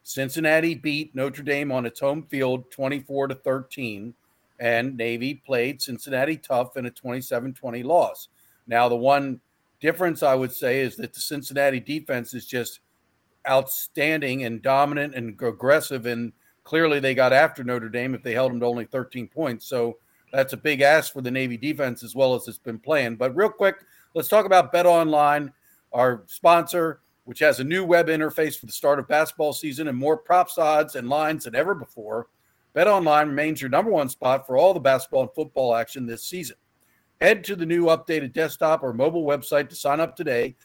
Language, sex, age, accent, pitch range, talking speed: English, male, 50-69, American, 130-160 Hz, 190 wpm